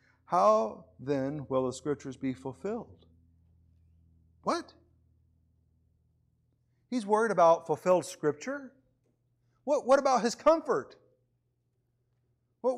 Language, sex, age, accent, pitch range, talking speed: English, male, 50-69, American, 125-195 Hz, 90 wpm